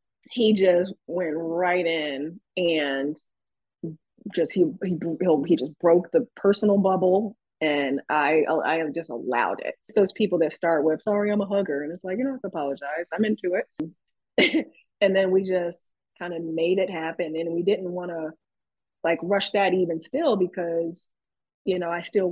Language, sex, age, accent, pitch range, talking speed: English, female, 30-49, American, 160-195 Hz, 180 wpm